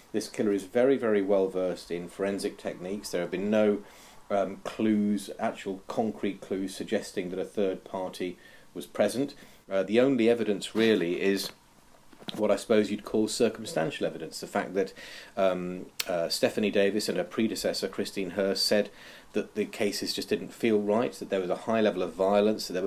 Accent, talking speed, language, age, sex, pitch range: British, 180 wpm, English, 40-59, male, 95-115 Hz